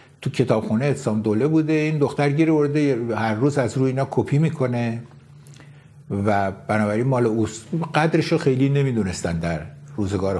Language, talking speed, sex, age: Persian, 140 wpm, male, 60-79